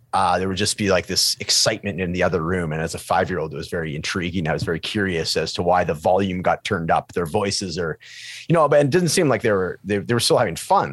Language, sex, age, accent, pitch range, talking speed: English, male, 30-49, American, 95-130 Hz, 275 wpm